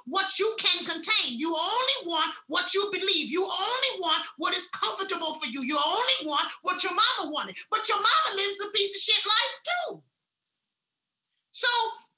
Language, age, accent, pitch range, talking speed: English, 30-49, American, 285-395 Hz, 175 wpm